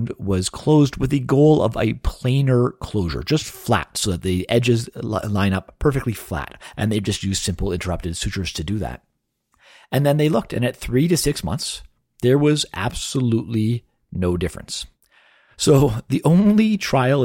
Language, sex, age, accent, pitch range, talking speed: English, male, 40-59, American, 100-135 Hz, 165 wpm